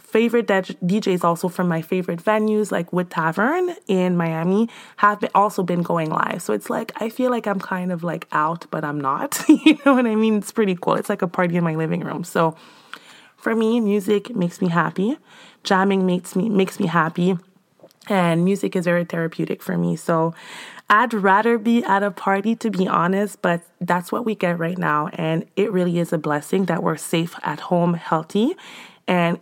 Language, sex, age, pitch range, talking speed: English, female, 20-39, 170-210 Hz, 200 wpm